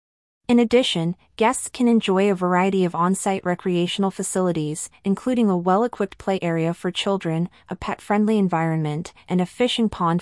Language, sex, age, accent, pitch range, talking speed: English, female, 30-49, American, 170-205 Hz, 145 wpm